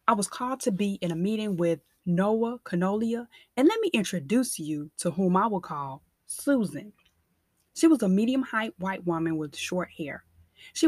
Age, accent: 20-39, American